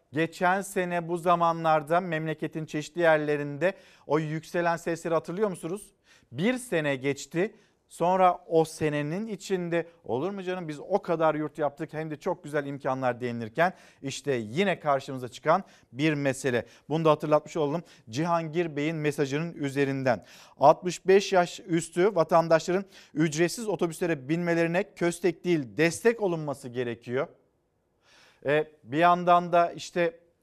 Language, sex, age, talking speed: Turkish, male, 50-69, 125 wpm